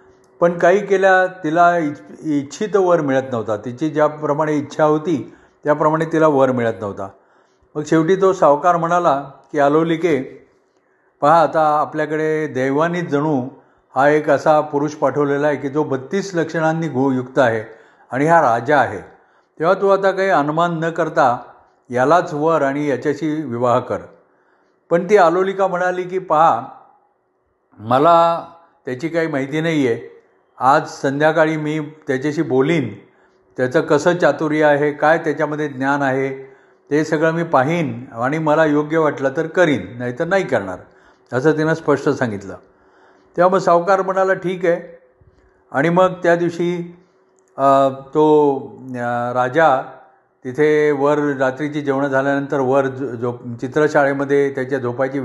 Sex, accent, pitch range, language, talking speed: male, native, 135-165 Hz, Marathi, 135 wpm